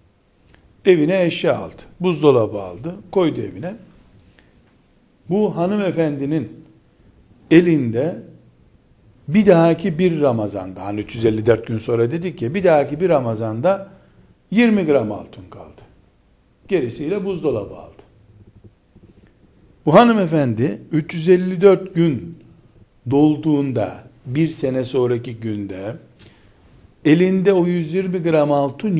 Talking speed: 95 wpm